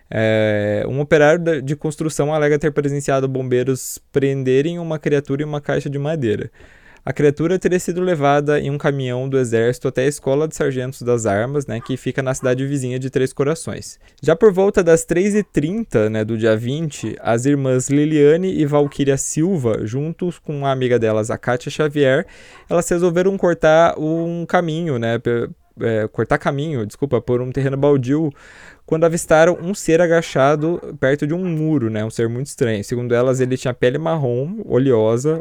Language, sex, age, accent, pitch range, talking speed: Portuguese, male, 20-39, Brazilian, 125-155 Hz, 175 wpm